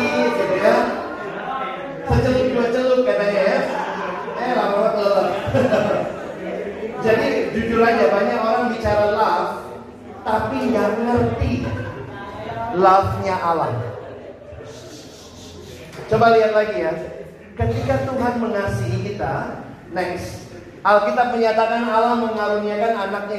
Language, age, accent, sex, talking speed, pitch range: Indonesian, 30-49, native, male, 90 wpm, 180-240 Hz